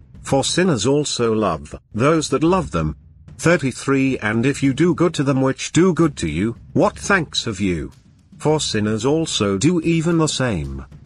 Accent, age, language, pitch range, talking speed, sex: British, 50-69, English, 110-150 Hz, 175 wpm, male